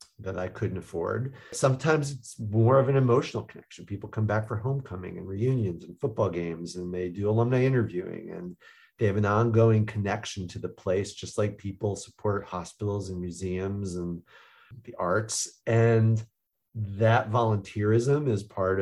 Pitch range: 100-115 Hz